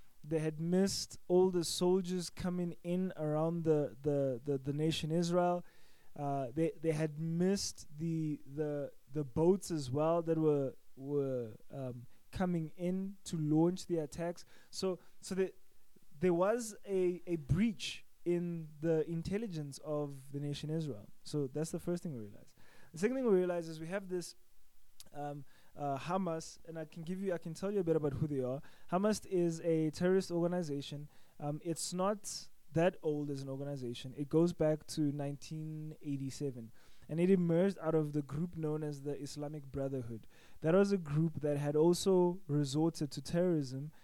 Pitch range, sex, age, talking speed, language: 145-175 Hz, male, 20-39, 170 wpm, English